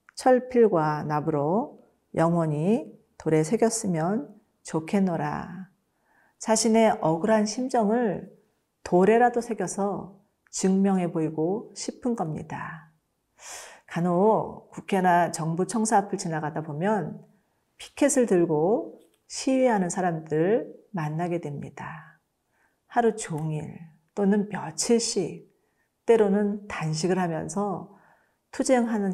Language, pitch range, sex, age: Korean, 165-215 Hz, female, 40-59